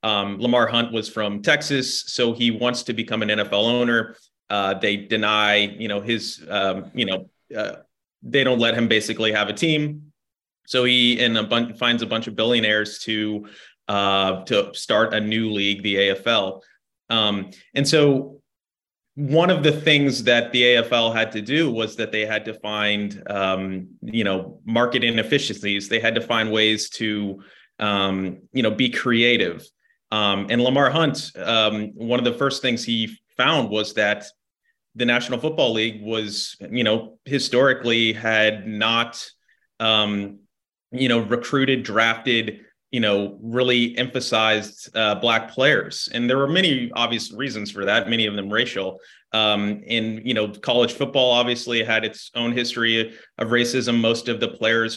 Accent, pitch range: American, 105-120 Hz